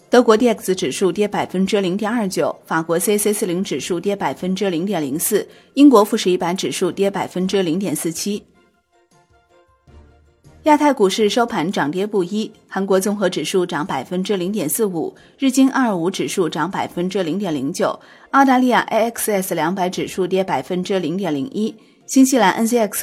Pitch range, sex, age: 175-220 Hz, female, 30-49